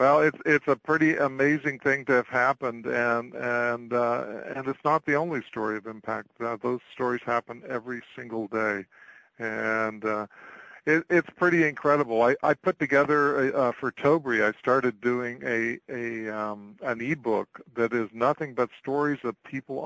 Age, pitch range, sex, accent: 50-69, 110-130 Hz, male, American